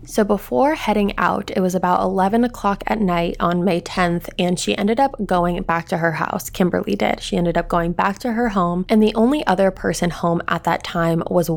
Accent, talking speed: American, 225 wpm